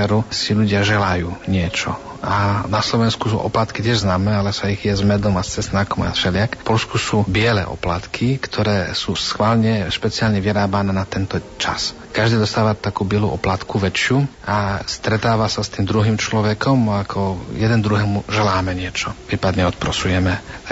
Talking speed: 160 wpm